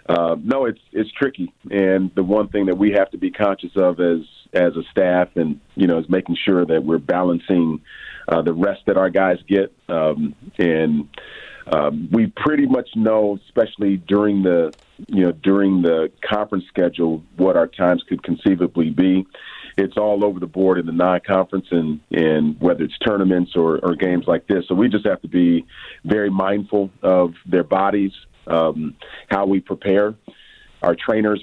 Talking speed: 180 wpm